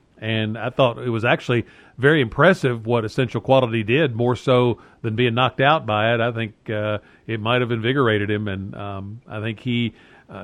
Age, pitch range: 50-69, 105-130 Hz